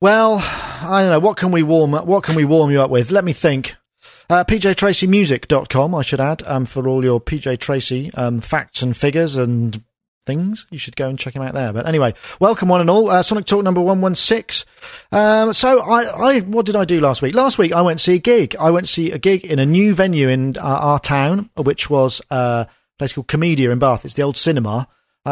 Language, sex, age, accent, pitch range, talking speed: English, male, 40-59, British, 130-180 Hz, 235 wpm